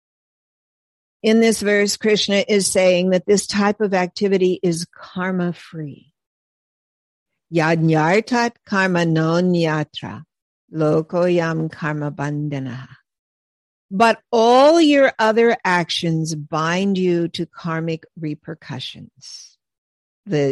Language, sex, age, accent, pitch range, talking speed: English, female, 50-69, American, 165-225 Hz, 95 wpm